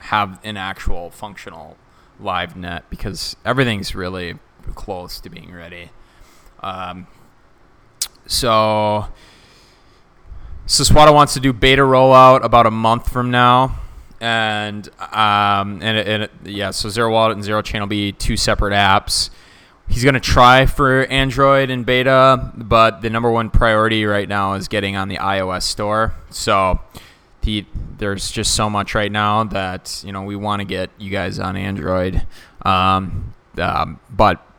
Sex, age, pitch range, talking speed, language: male, 20-39, 95-115 Hz, 145 wpm, English